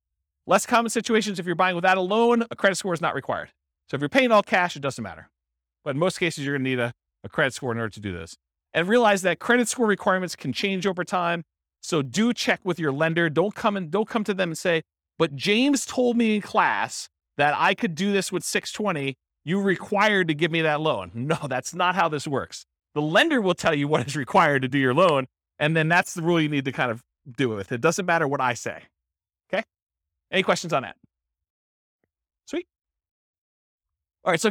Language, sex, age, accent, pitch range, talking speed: English, male, 40-59, American, 135-195 Hz, 225 wpm